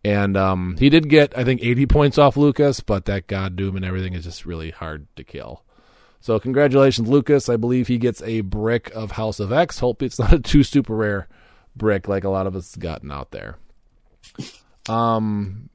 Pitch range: 105-135 Hz